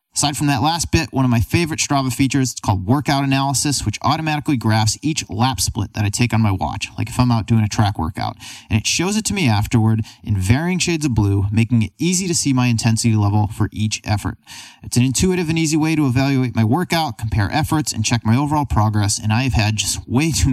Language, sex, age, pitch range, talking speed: English, male, 30-49, 105-140 Hz, 235 wpm